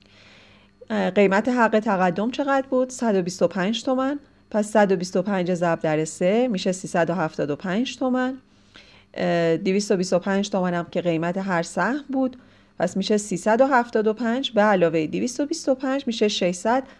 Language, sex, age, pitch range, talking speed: Persian, female, 40-59, 170-225 Hz, 110 wpm